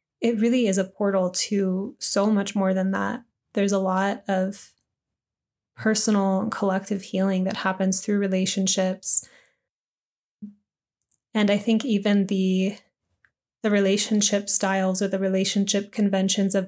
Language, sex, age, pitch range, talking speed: English, female, 20-39, 190-210 Hz, 130 wpm